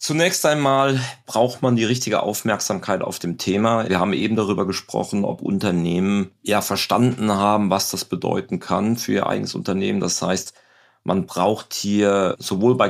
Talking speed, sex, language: 165 wpm, male, German